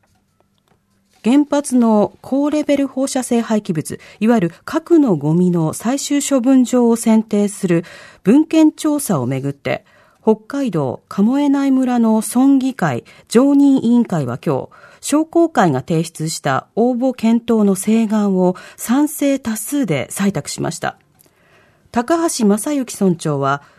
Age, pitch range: 40-59, 180-260 Hz